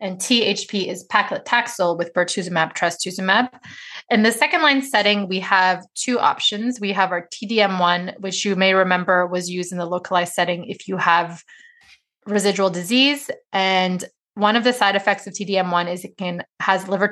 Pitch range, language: 190-225 Hz, English